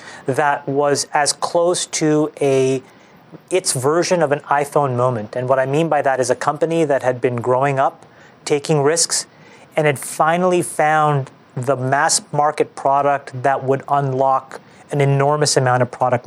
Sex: male